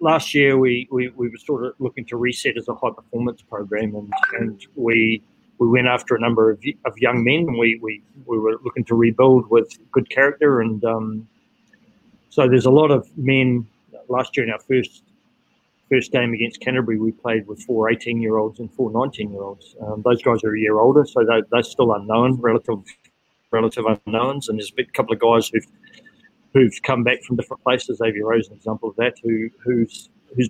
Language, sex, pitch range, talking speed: English, male, 110-130 Hz, 210 wpm